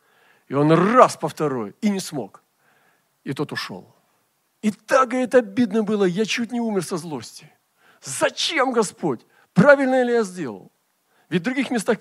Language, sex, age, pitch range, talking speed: Russian, male, 40-59, 120-175 Hz, 160 wpm